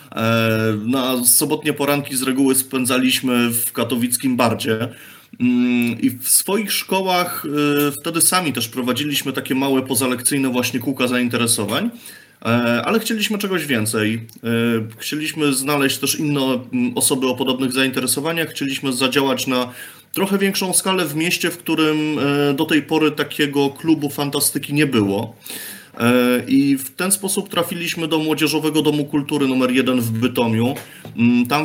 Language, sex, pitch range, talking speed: Polish, male, 125-150 Hz, 125 wpm